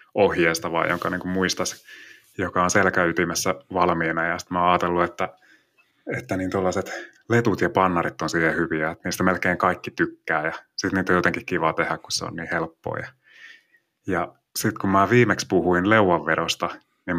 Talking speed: 170 wpm